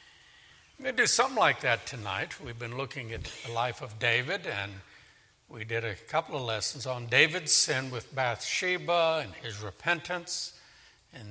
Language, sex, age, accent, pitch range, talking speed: English, male, 60-79, American, 115-165 Hz, 160 wpm